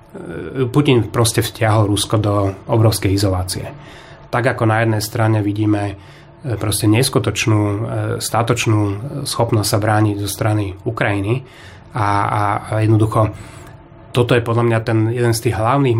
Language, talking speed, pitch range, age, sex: Slovak, 130 wpm, 105-120 Hz, 30-49, male